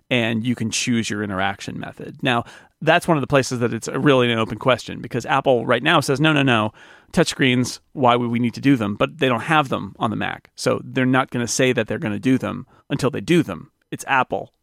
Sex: male